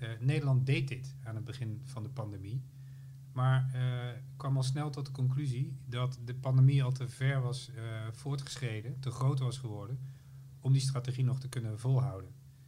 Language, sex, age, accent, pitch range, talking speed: Dutch, male, 40-59, Dutch, 120-135 Hz, 180 wpm